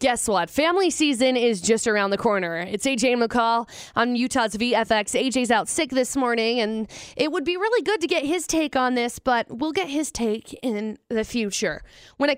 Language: English